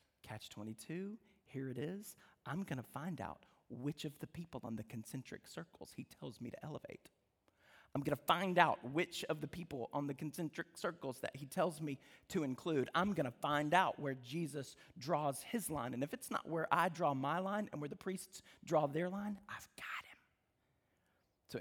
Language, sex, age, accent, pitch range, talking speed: English, male, 40-59, American, 140-170 Hz, 200 wpm